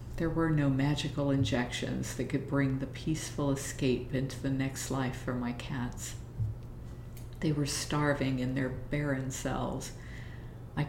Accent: American